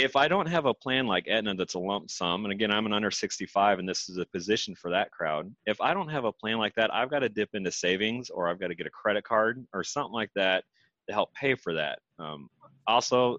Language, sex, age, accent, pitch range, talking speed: English, male, 30-49, American, 100-125 Hz, 265 wpm